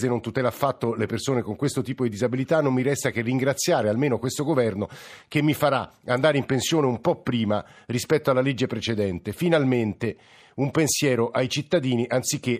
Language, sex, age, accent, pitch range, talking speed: Italian, male, 50-69, native, 115-145 Hz, 175 wpm